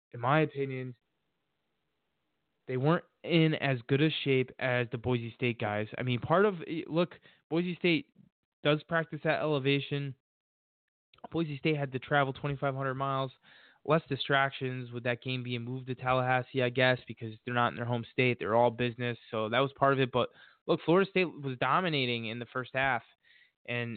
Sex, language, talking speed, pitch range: male, English, 180 wpm, 125-145 Hz